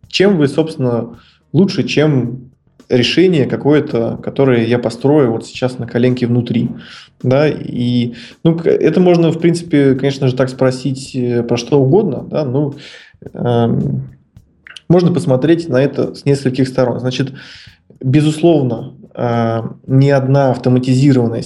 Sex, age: male, 20-39